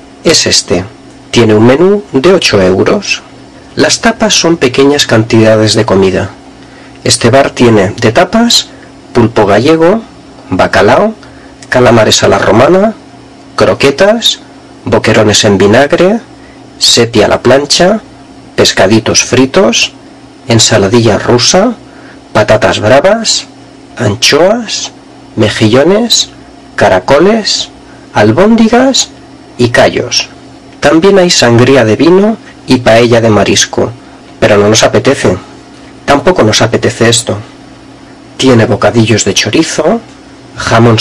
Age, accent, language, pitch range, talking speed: 40-59, Spanish, Spanish, 110-180 Hz, 100 wpm